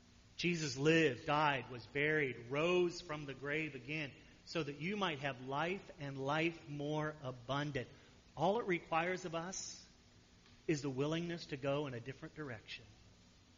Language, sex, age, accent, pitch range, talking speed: English, male, 40-59, American, 135-180 Hz, 150 wpm